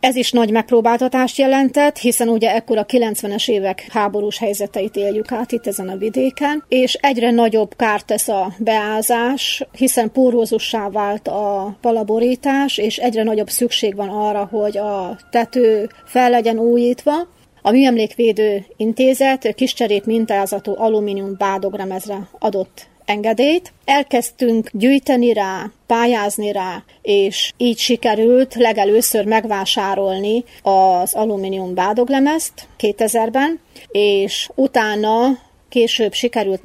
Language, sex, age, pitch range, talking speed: Hungarian, female, 30-49, 205-245 Hz, 120 wpm